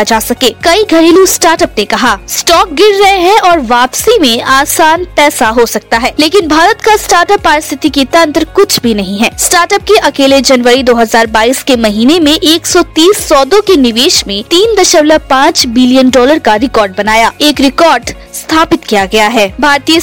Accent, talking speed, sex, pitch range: native, 170 wpm, female, 250-340 Hz